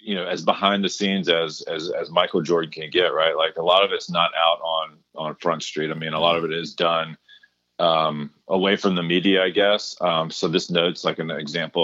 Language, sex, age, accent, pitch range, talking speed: English, male, 30-49, American, 80-105 Hz, 240 wpm